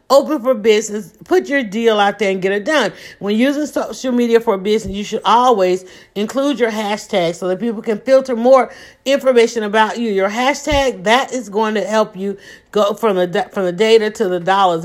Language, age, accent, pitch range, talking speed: English, 40-59, American, 195-255 Hz, 200 wpm